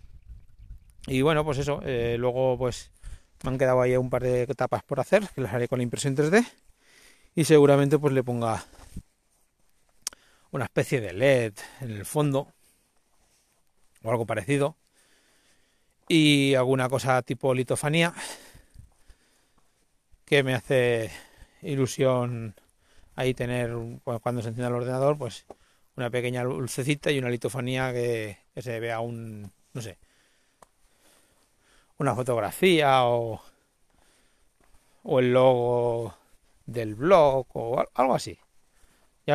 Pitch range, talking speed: 120-135 Hz, 125 wpm